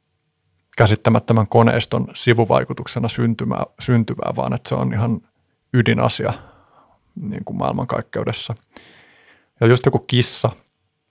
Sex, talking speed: male, 90 wpm